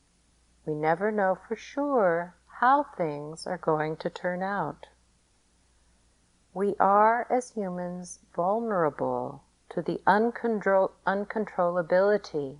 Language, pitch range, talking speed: English, 150-195 Hz, 95 wpm